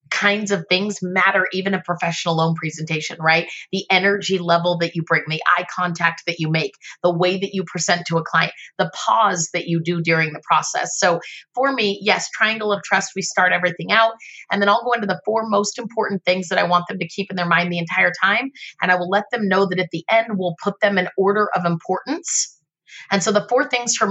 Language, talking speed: English, 235 wpm